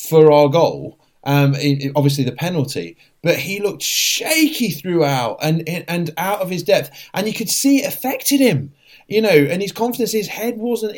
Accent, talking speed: British, 180 wpm